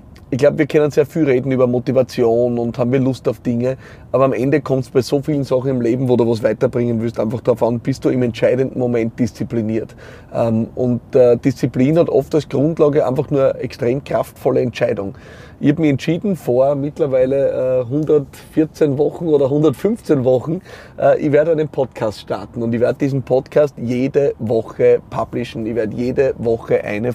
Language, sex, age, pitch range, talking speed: German, male, 30-49, 125-155 Hz, 180 wpm